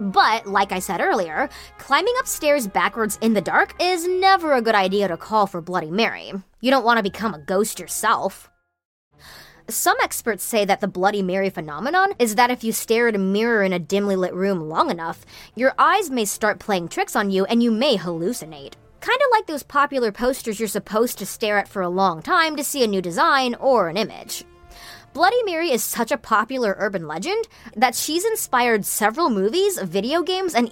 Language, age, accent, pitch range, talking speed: English, 20-39, American, 195-270 Hz, 195 wpm